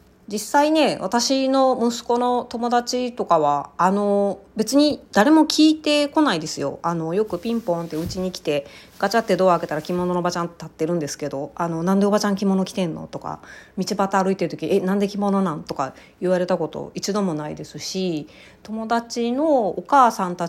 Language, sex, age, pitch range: Japanese, female, 30-49, 170-220 Hz